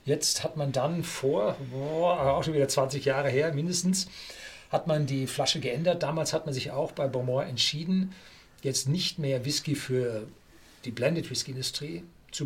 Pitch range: 130-160 Hz